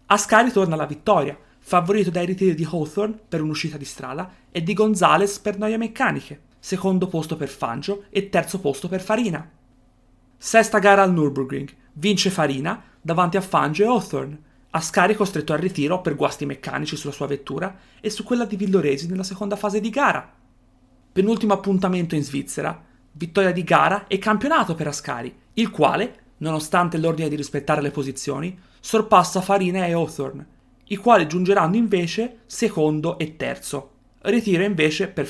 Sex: female